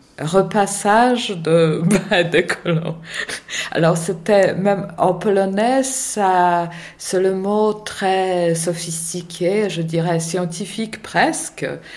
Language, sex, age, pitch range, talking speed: French, female, 50-69, 165-200 Hz, 105 wpm